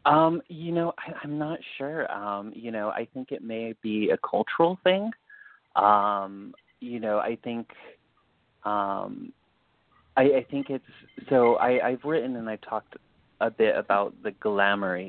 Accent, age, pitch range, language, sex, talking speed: American, 30-49, 105-135 Hz, English, male, 150 wpm